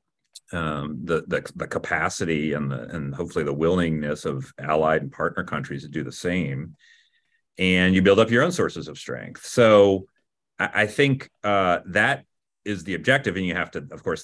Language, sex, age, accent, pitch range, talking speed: English, male, 40-59, American, 80-100 Hz, 185 wpm